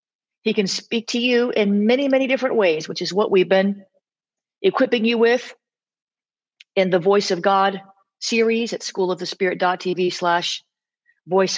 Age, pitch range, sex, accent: 40-59, 185-225 Hz, female, American